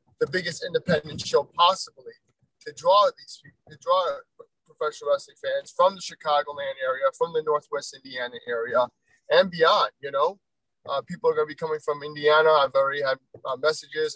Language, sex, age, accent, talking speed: English, male, 20-39, American, 170 wpm